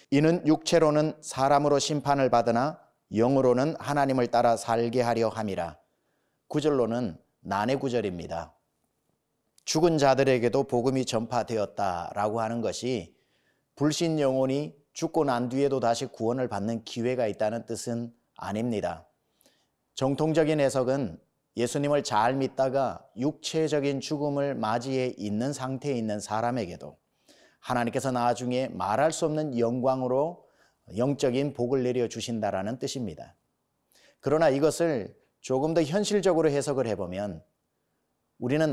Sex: male